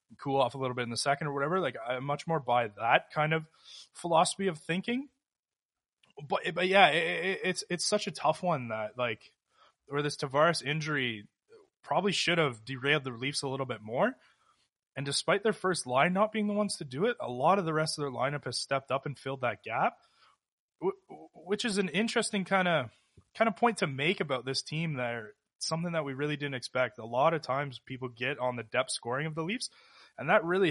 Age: 20-39